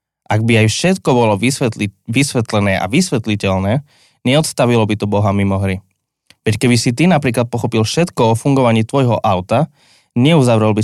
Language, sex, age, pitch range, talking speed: Slovak, male, 20-39, 100-125 Hz, 150 wpm